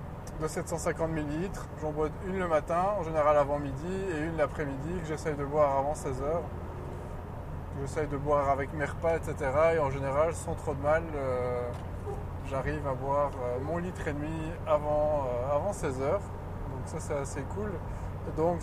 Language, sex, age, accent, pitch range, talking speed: French, male, 20-39, French, 100-155 Hz, 180 wpm